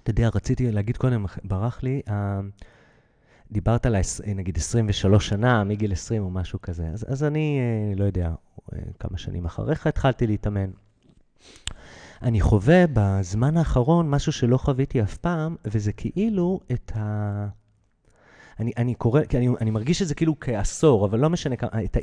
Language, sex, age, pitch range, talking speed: English, male, 30-49, 105-145 Hz, 145 wpm